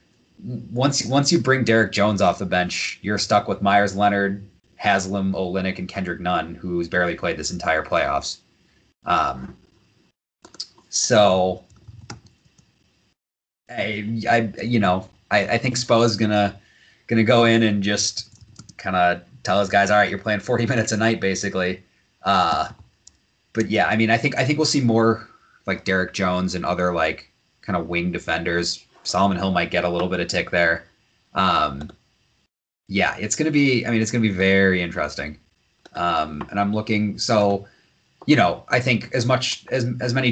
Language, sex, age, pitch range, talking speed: English, male, 30-49, 90-115 Hz, 170 wpm